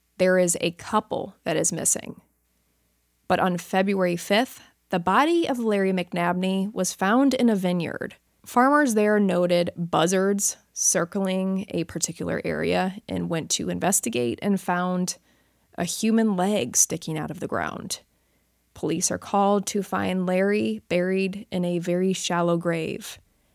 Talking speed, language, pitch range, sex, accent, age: 140 wpm, English, 170-210 Hz, female, American, 20-39